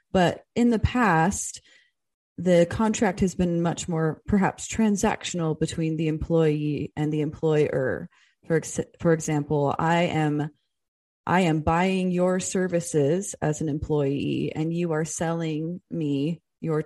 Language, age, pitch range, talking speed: English, 30-49, 150-180 Hz, 130 wpm